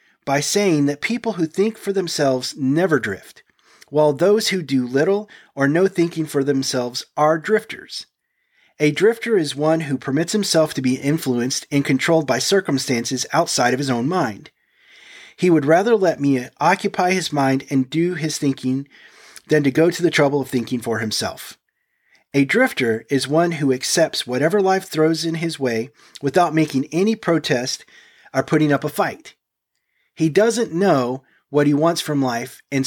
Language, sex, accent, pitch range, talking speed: English, male, American, 130-175 Hz, 170 wpm